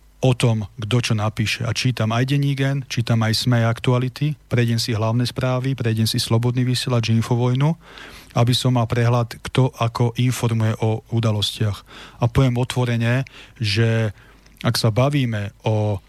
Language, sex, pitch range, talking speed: Slovak, male, 115-130 Hz, 145 wpm